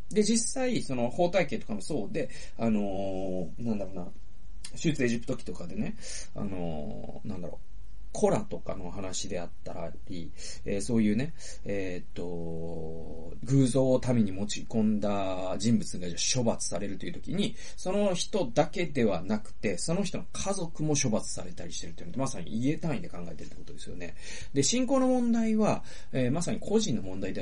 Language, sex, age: Japanese, male, 40-59